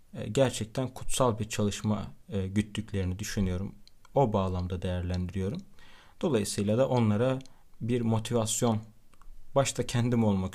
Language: Turkish